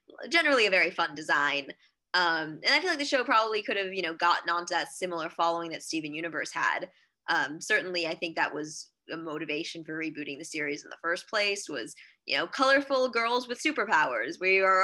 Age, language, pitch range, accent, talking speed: 20-39, English, 165-195 Hz, American, 205 wpm